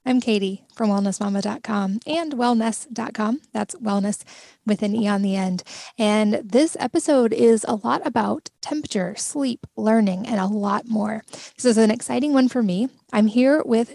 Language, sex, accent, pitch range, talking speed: English, female, American, 205-245 Hz, 165 wpm